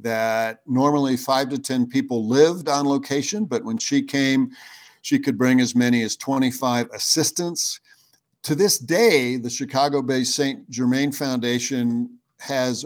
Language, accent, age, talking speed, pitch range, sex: English, American, 60-79, 140 wpm, 125-150 Hz, male